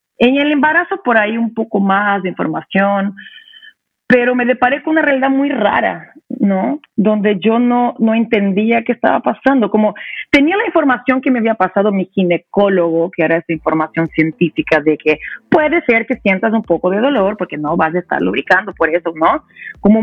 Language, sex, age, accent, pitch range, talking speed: Spanish, female, 40-59, Mexican, 185-260 Hz, 185 wpm